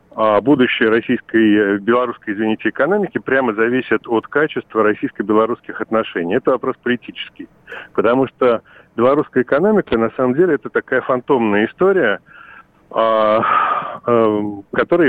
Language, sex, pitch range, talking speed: Russian, male, 105-125 Hz, 105 wpm